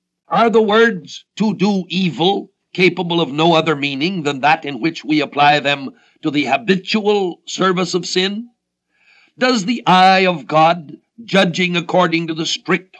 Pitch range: 160-195 Hz